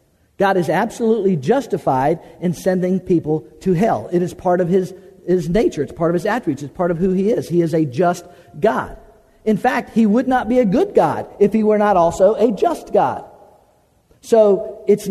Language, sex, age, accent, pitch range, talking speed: English, male, 50-69, American, 175-220 Hz, 205 wpm